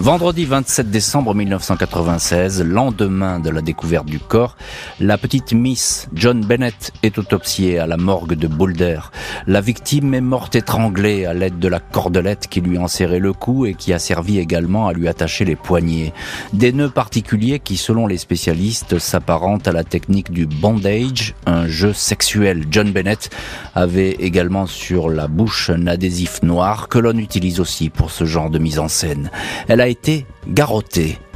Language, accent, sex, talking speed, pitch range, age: French, French, male, 165 wpm, 90-110 Hz, 40-59